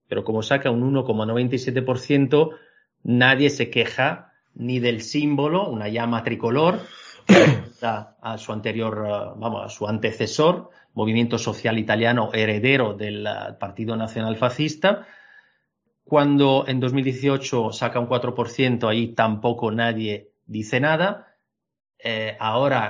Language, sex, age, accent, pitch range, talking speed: Portuguese, male, 40-59, Spanish, 110-130 Hz, 105 wpm